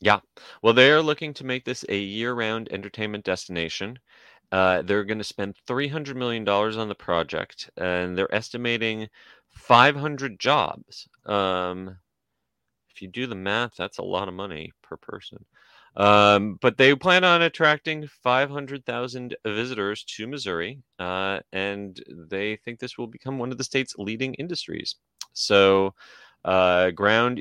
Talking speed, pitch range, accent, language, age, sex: 145 wpm, 95-125 Hz, American, English, 30-49, male